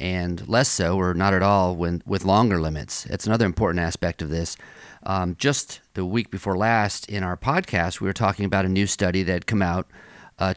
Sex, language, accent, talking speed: male, English, American, 215 wpm